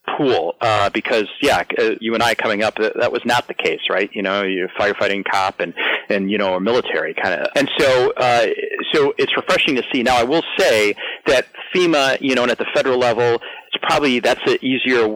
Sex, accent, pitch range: male, American, 105-135 Hz